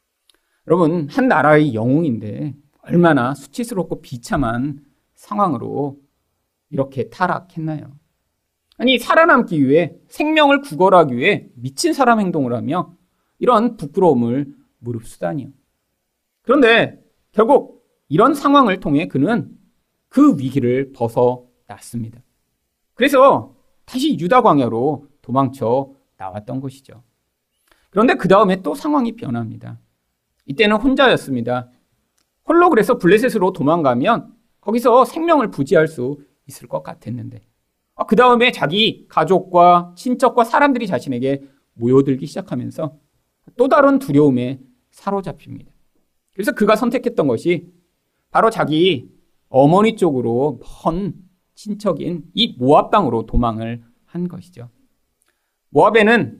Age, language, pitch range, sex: 40-59, Korean, 125-205 Hz, male